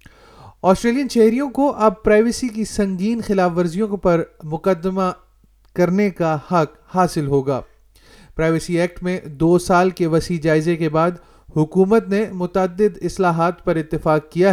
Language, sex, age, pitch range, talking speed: Urdu, male, 30-49, 165-185 Hz, 135 wpm